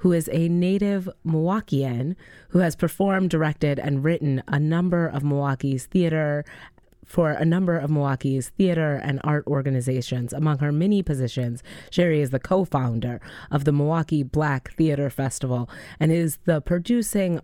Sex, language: female, English